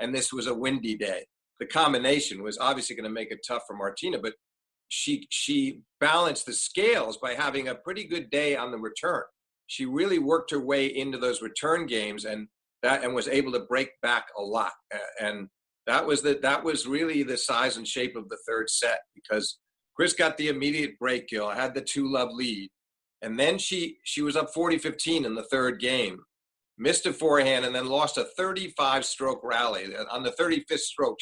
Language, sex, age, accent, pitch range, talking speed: English, male, 50-69, American, 120-160 Hz, 195 wpm